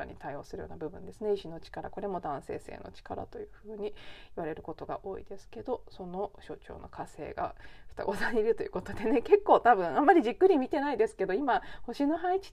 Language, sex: Japanese, female